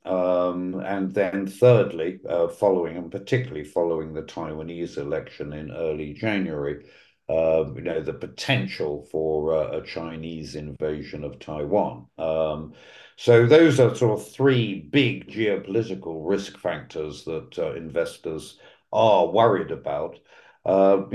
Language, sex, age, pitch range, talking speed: English, male, 60-79, 80-115 Hz, 130 wpm